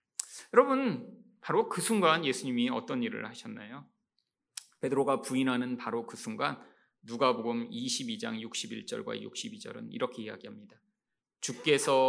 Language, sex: Korean, male